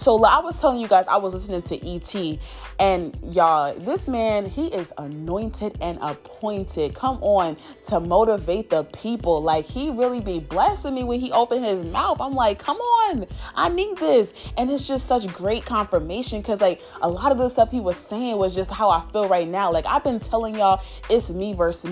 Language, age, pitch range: English, 20-39, 185-240 Hz